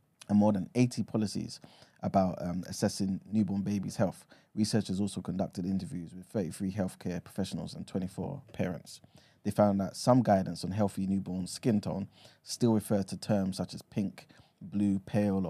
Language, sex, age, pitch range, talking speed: English, male, 20-39, 95-110 Hz, 160 wpm